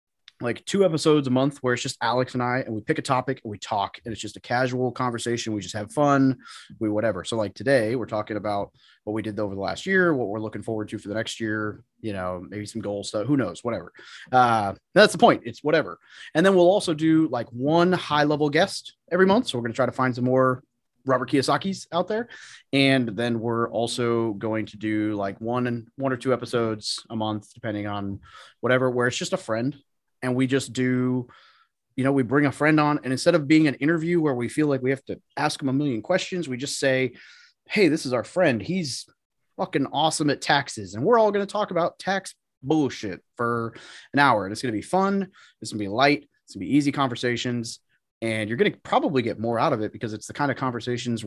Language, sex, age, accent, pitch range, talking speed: English, male, 30-49, American, 110-140 Hz, 240 wpm